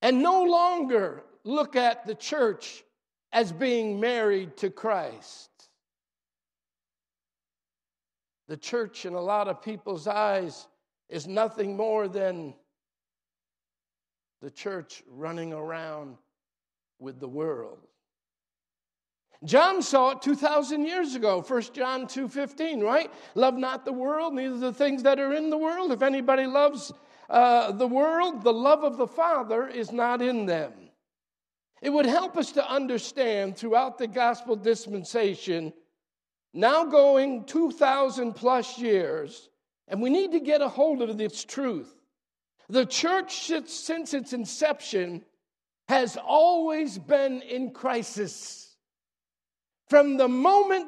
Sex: male